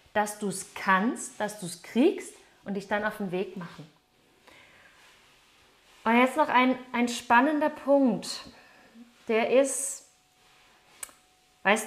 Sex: female